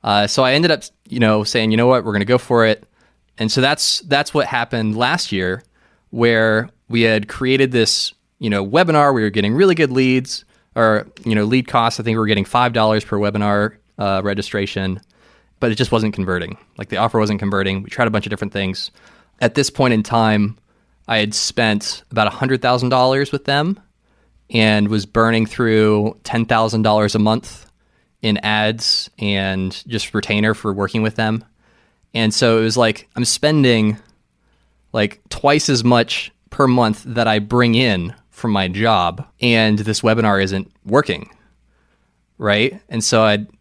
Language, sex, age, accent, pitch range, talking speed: English, male, 20-39, American, 105-125 Hz, 175 wpm